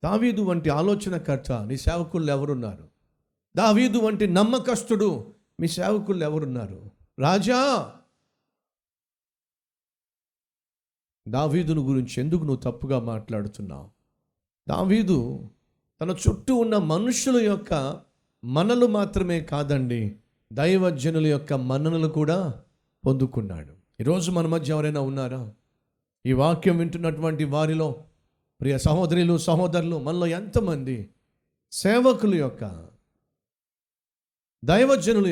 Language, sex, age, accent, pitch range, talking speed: Telugu, male, 50-69, native, 140-210 Hz, 85 wpm